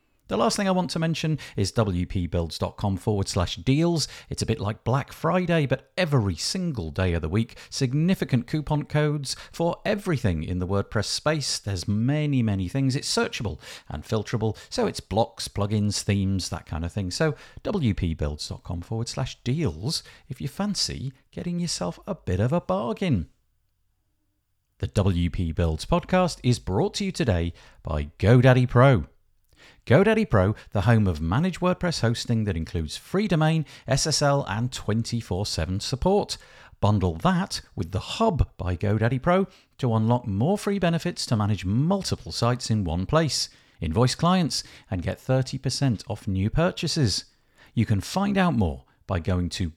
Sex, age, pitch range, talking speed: male, 50-69, 95-155 Hz, 155 wpm